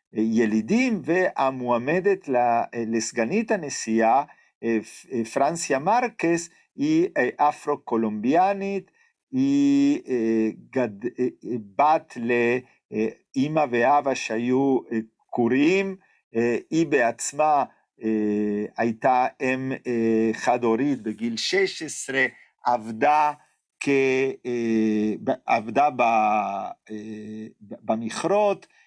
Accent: Italian